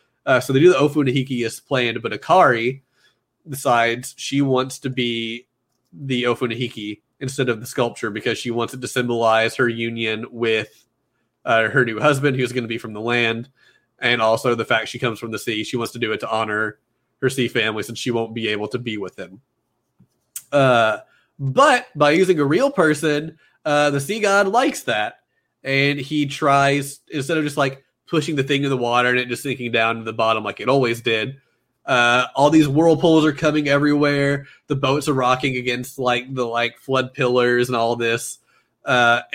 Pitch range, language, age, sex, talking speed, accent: 120-140 Hz, English, 20-39, male, 195 wpm, American